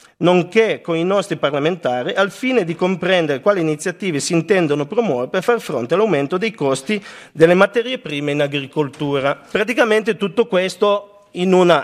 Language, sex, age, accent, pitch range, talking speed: Italian, male, 40-59, native, 145-195 Hz, 150 wpm